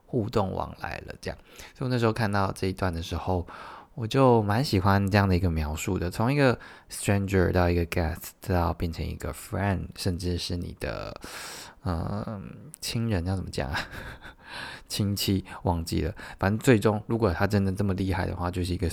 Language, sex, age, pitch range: Chinese, male, 20-39, 90-110 Hz